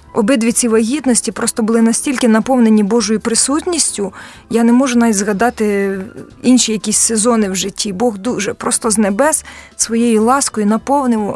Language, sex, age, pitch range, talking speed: Ukrainian, female, 20-39, 220-260 Hz, 135 wpm